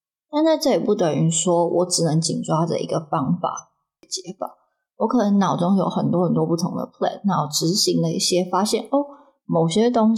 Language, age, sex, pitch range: Chinese, 20-39, female, 175-225 Hz